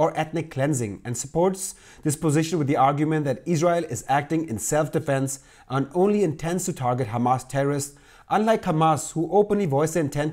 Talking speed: 175 wpm